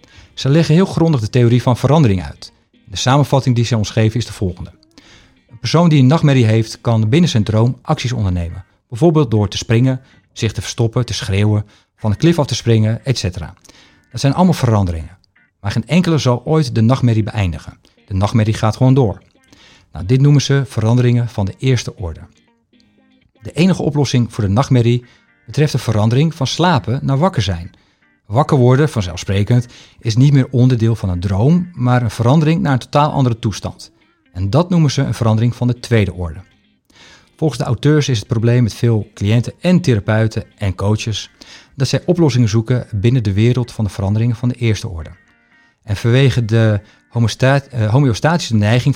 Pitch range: 105-135 Hz